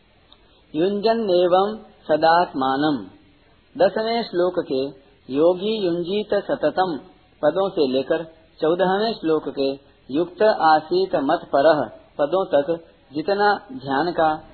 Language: Hindi